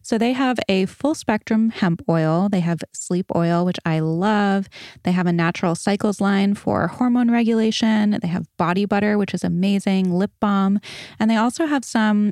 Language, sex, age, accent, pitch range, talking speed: English, female, 20-39, American, 175-215 Hz, 185 wpm